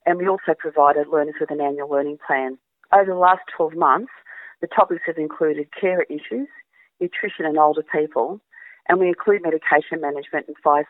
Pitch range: 150-195 Hz